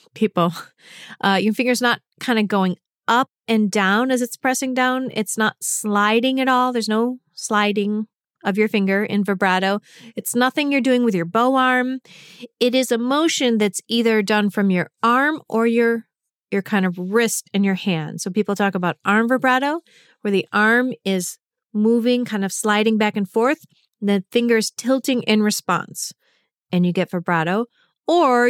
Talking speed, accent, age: 175 wpm, American, 30-49